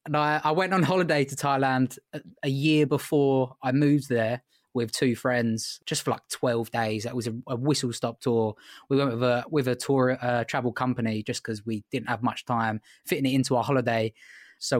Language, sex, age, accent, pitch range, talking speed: English, male, 20-39, British, 120-140 Hz, 215 wpm